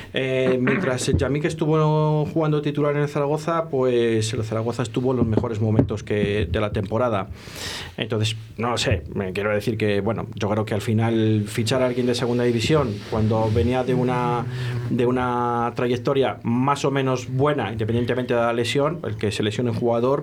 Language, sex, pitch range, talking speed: Spanish, male, 110-135 Hz, 185 wpm